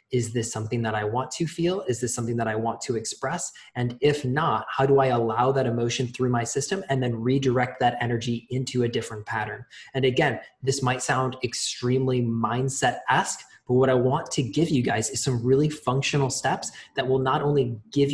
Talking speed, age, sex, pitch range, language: 205 wpm, 20-39, male, 120-140 Hz, English